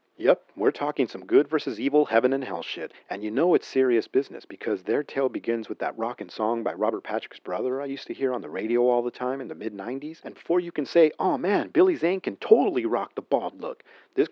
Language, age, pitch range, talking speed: English, 40-59, 110-155 Hz, 245 wpm